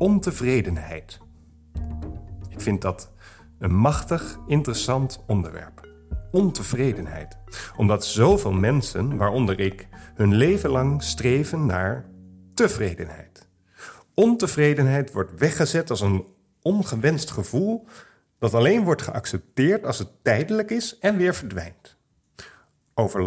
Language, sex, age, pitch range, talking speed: Dutch, male, 50-69, 95-160 Hz, 100 wpm